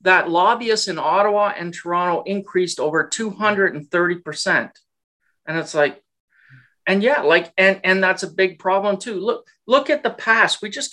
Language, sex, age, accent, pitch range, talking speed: English, male, 40-59, American, 180-210 Hz, 160 wpm